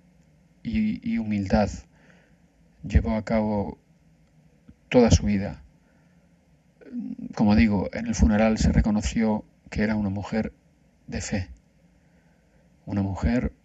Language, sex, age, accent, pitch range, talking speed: Spanish, male, 40-59, Spanish, 100-155 Hz, 100 wpm